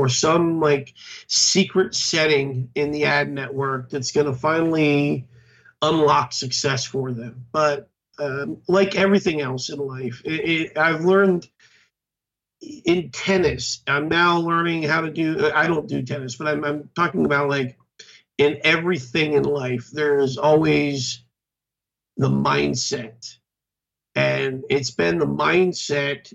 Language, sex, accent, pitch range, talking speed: English, male, American, 140-165 Hz, 130 wpm